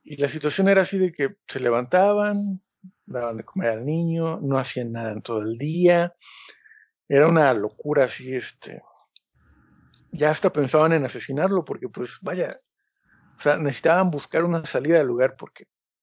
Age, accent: 50-69, Mexican